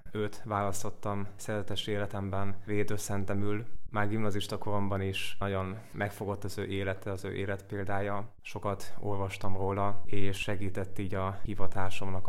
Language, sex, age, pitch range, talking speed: Hungarian, male, 20-39, 95-105 Hz, 125 wpm